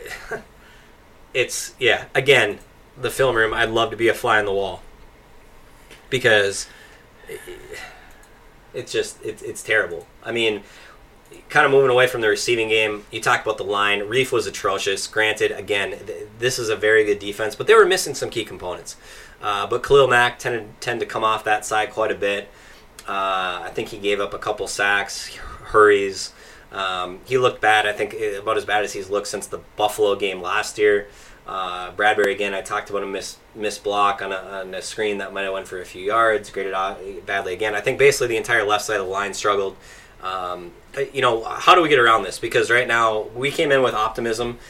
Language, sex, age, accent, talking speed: English, male, 20-39, American, 200 wpm